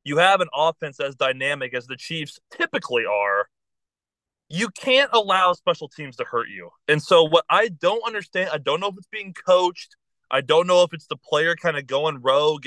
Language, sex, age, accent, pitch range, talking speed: English, male, 20-39, American, 135-185 Hz, 205 wpm